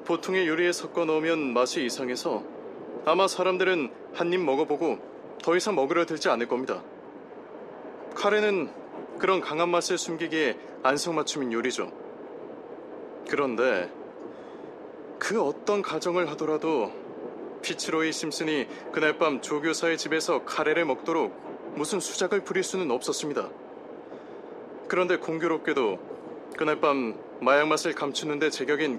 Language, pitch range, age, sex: Korean, 155-200 Hz, 20-39, male